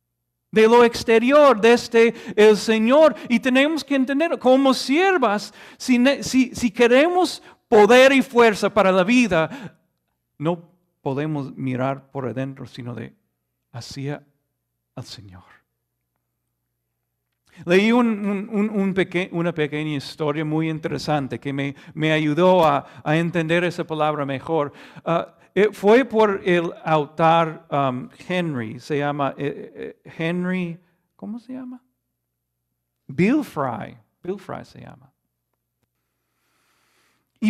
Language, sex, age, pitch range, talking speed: Spanish, male, 50-69, 130-210 Hz, 120 wpm